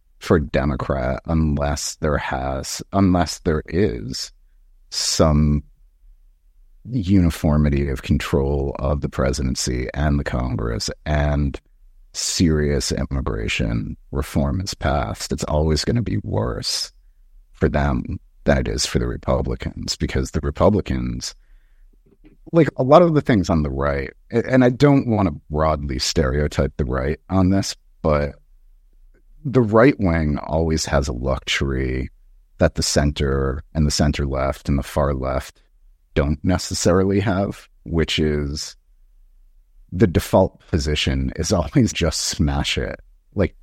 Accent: American